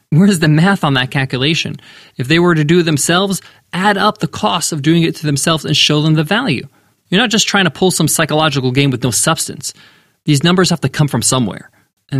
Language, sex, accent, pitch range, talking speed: English, male, American, 135-180 Hz, 230 wpm